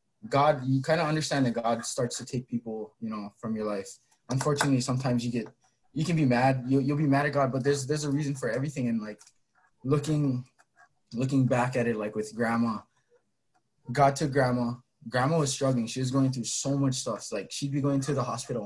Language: English